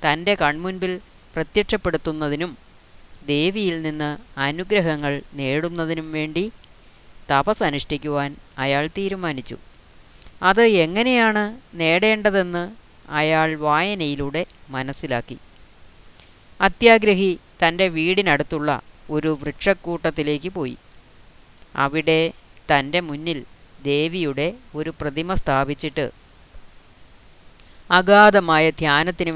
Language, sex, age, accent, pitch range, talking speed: Malayalam, female, 30-49, native, 145-170 Hz, 65 wpm